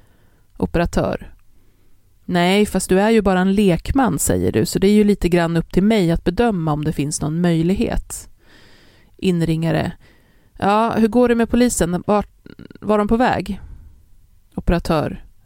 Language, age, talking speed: Swedish, 30-49, 155 wpm